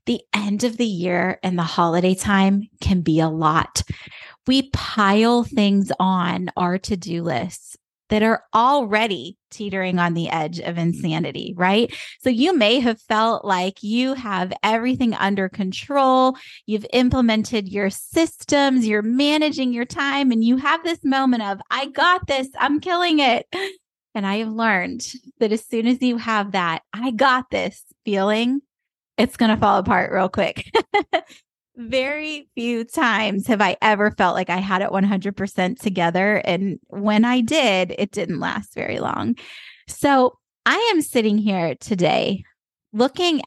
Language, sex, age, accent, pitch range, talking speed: English, female, 20-39, American, 190-250 Hz, 155 wpm